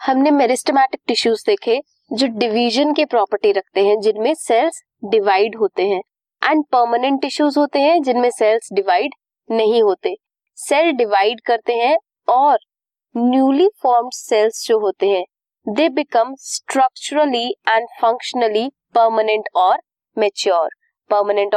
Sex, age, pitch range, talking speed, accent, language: female, 20-39, 225-340 Hz, 130 wpm, Indian, English